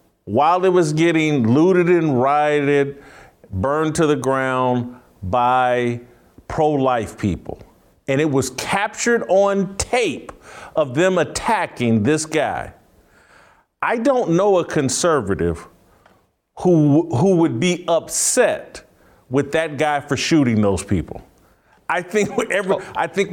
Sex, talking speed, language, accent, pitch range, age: male, 115 wpm, English, American, 150-210 Hz, 50-69